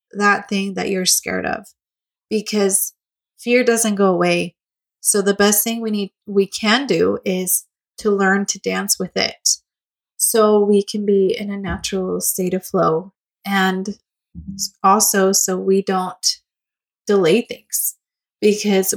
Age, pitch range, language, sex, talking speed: 20-39, 190-220 Hz, English, female, 140 wpm